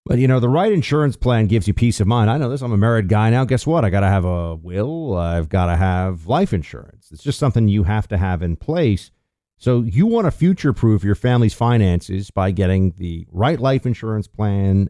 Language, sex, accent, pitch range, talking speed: English, male, American, 95-130 Hz, 235 wpm